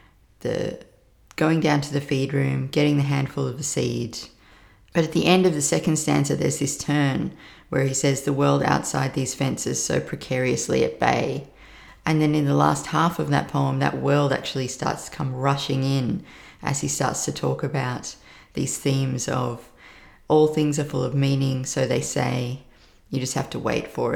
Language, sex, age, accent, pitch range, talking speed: English, female, 30-49, Australian, 125-145 Hz, 190 wpm